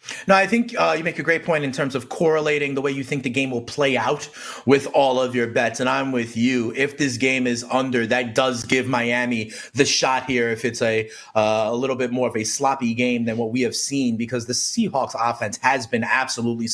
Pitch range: 125-175 Hz